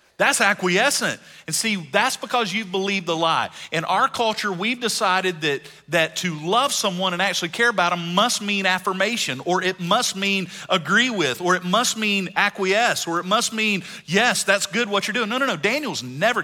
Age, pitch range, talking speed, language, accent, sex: 40-59, 130-195 Hz, 200 wpm, English, American, male